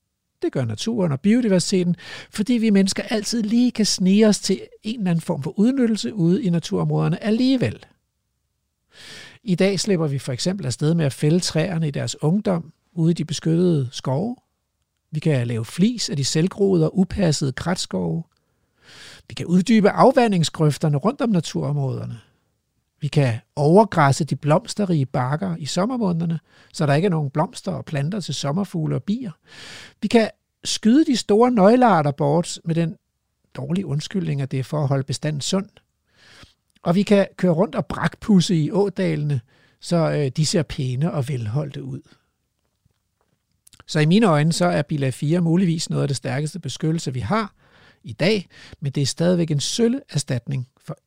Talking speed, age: 165 wpm, 60-79